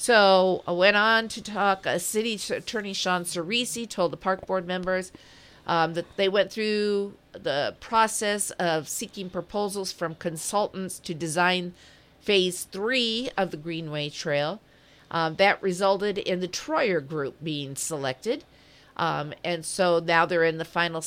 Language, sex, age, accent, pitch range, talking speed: English, female, 50-69, American, 160-190 Hz, 150 wpm